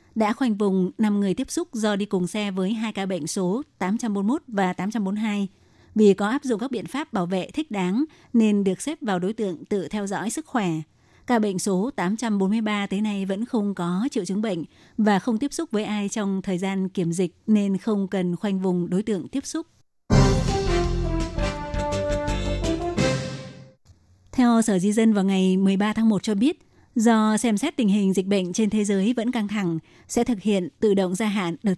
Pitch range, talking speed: 185-220 Hz, 200 wpm